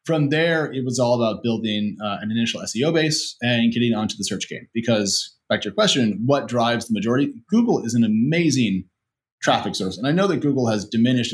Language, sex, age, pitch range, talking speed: English, male, 30-49, 105-140 Hz, 210 wpm